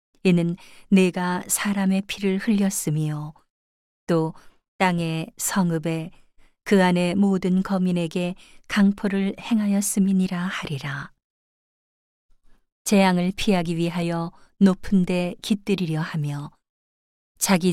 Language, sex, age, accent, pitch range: Korean, female, 40-59, native, 170-195 Hz